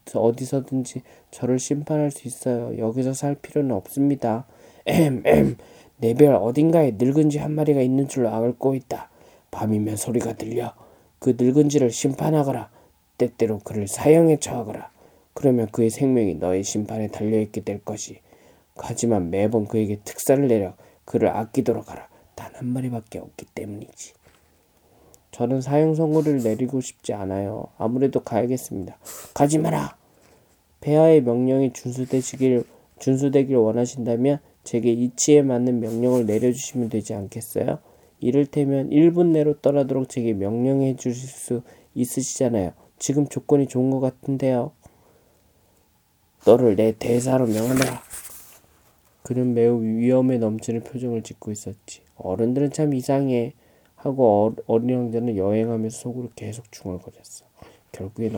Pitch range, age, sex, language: 115-135 Hz, 20-39, male, Korean